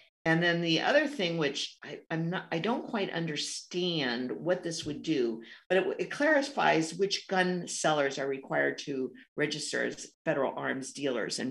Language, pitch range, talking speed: English, 145-190 Hz, 170 wpm